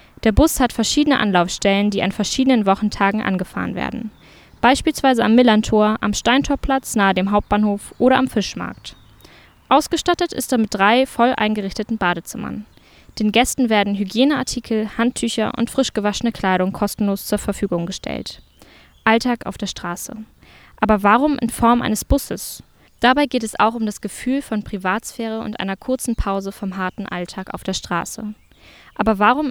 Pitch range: 200-240 Hz